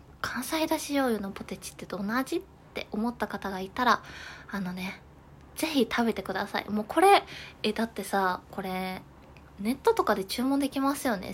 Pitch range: 195-250 Hz